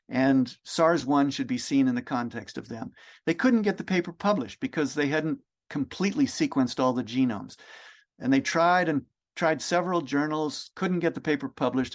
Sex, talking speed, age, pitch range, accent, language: male, 185 wpm, 50-69, 130-185 Hz, American, English